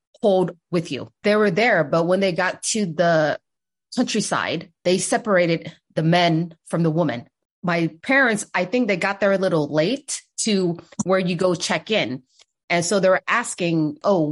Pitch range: 170-215 Hz